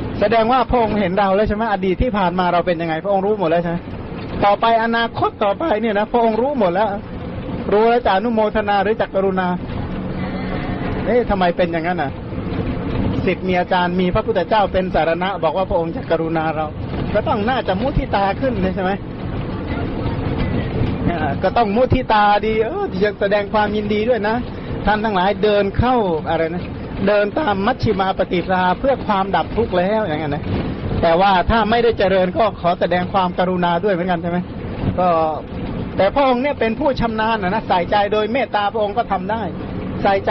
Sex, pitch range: male, 175-215 Hz